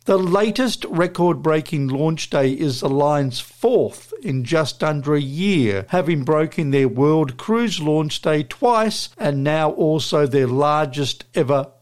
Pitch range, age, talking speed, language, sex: 140-185 Hz, 50-69, 140 wpm, English, male